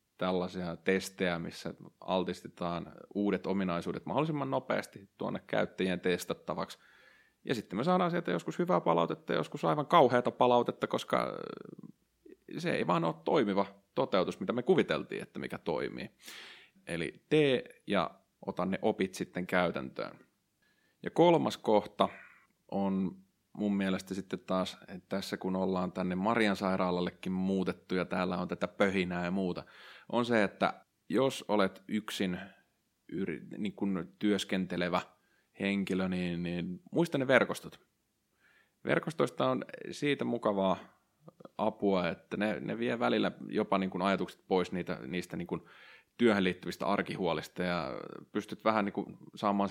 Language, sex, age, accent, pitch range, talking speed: Finnish, male, 30-49, native, 90-105 Hz, 130 wpm